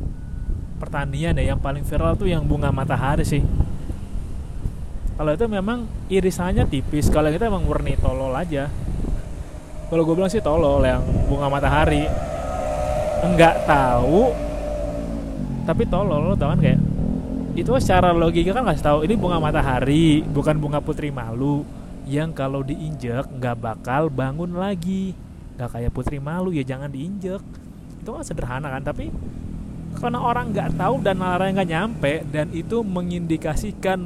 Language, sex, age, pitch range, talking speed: Indonesian, male, 20-39, 135-195 Hz, 145 wpm